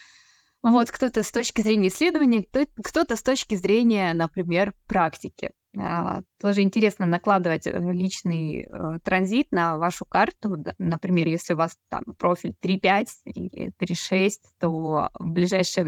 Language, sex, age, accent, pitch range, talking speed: Russian, female, 20-39, native, 175-215 Hz, 120 wpm